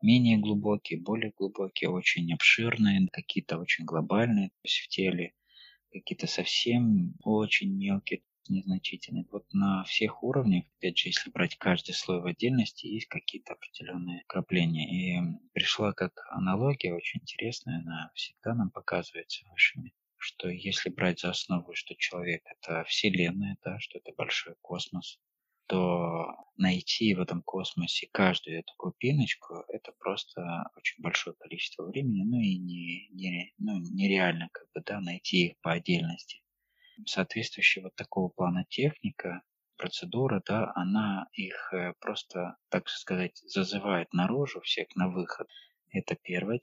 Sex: male